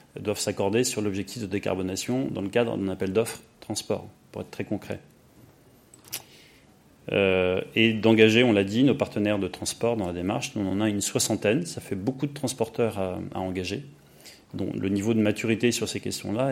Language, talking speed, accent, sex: French, 185 wpm, French, male